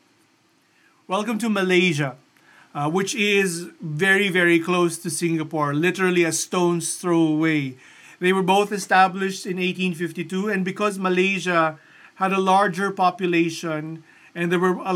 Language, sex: English, male